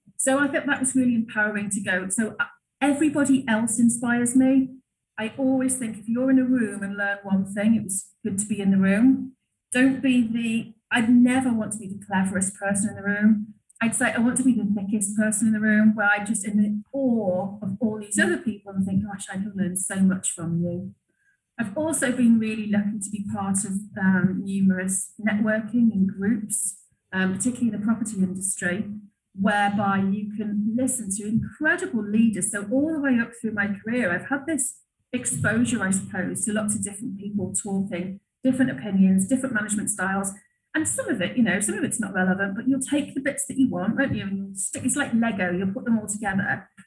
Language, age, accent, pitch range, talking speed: English, 30-49, British, 200-245 Hz, 210 wpm